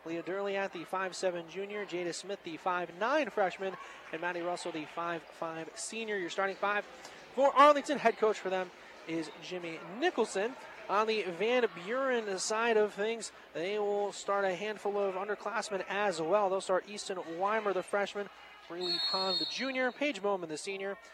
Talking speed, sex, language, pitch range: 165 wpm, male, English, 175-215 Hz